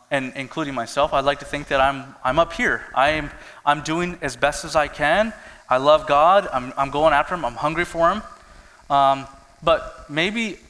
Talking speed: 200 wpm